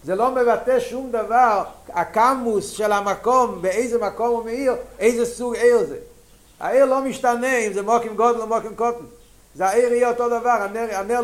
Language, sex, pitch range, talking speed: Hebrew, male, 195-240 Hz, 180 wpm